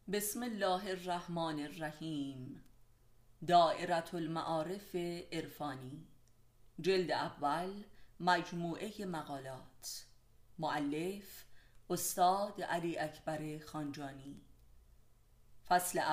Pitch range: 135-195 Hz